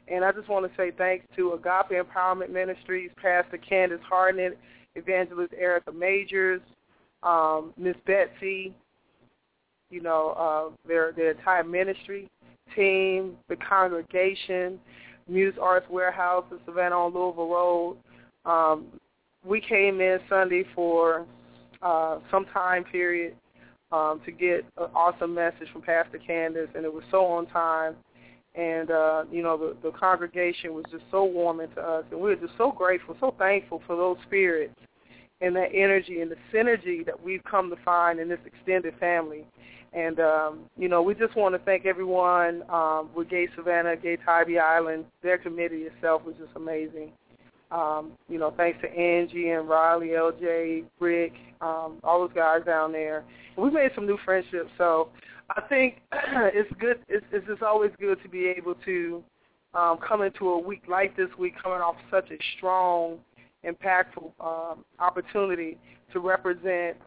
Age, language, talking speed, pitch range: 20-39, English, 155 wpm, 165-185 Hz